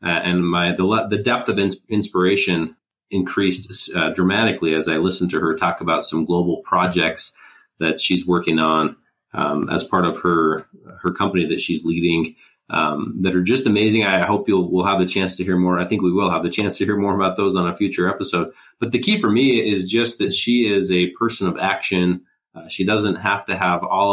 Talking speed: 220 wpm